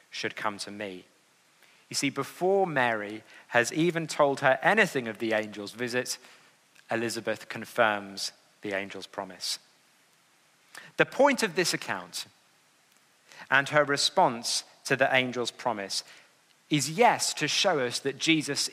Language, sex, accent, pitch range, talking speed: English, male, British, 110-150 Hz, 130 wpm